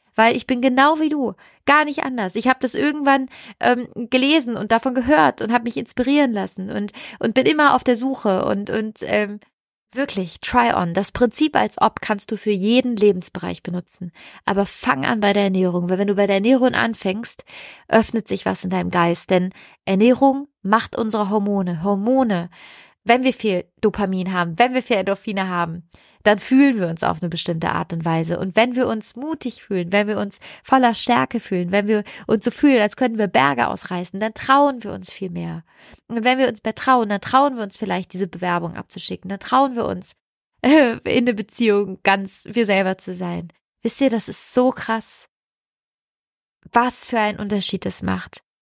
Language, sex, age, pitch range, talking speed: German, female, 20-39, 195-250 Hz, 195 wpm